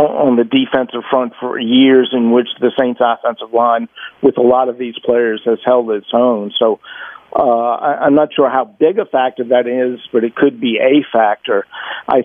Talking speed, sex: 195 wpm, male